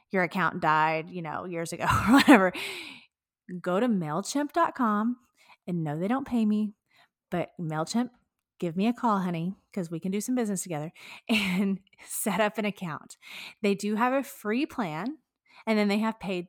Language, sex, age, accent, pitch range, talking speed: English, female, 30-49, American, 180-240 Hz, 175 wpm